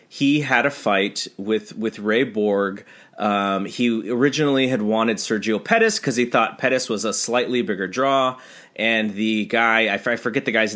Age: 30-49